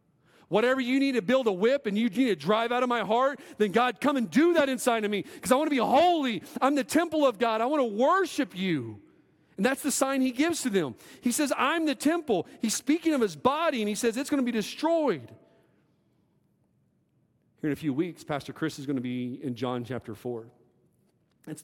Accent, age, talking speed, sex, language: American, 40-59, 230 wpm, male, English